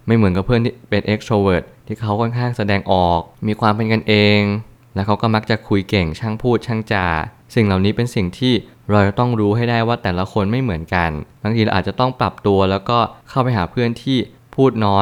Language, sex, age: Thai, male, 20-39